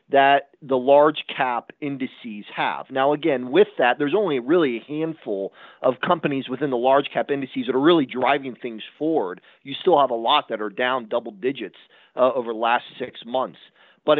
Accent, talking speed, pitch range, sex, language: American, 190 wpm, 130-165 Hz, male, English